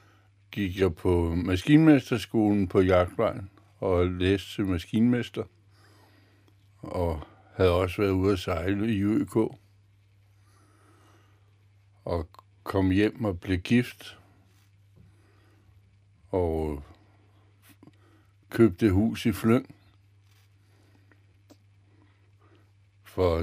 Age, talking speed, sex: 60-79, 75 wpm, male